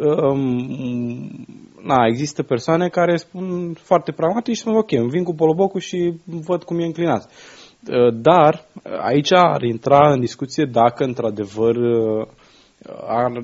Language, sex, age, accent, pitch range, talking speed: Romanian, male, 20-39, native, 120-170 Hz, 140 wpm